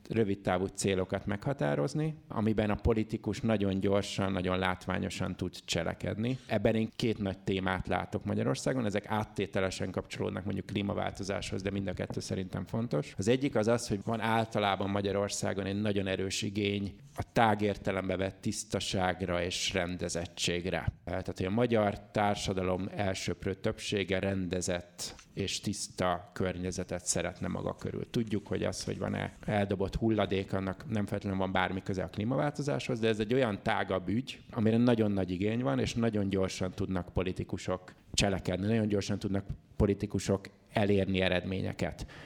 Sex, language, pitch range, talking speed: male, Hungarian, 95-110 Hz, 140 wpm